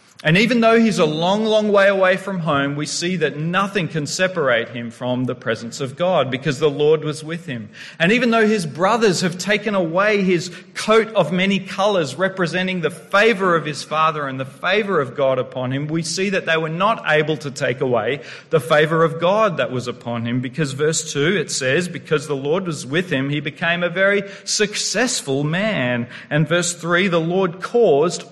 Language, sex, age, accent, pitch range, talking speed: English, male, 40-59, Australian, 145-185 Hz, 205 wpm